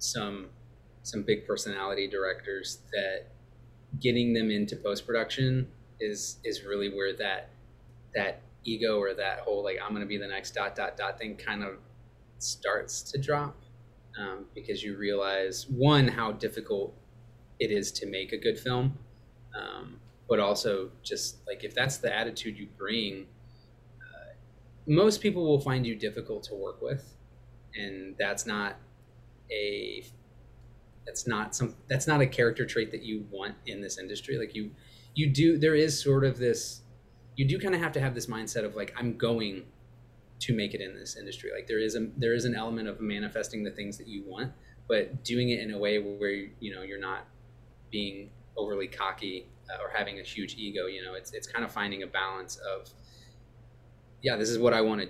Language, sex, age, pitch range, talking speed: English, male, 20-39, 105-125 Hz, 185 wpm